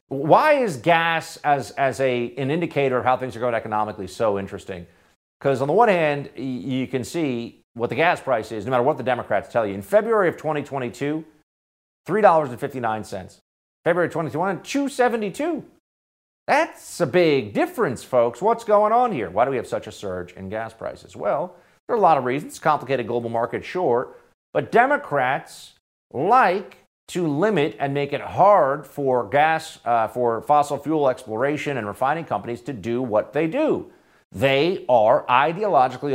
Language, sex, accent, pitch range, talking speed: English, male, American, 120-180 Hz, 170 wpm